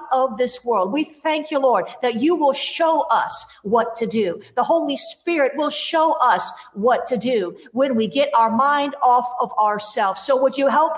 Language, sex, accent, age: English, female, American, 50-69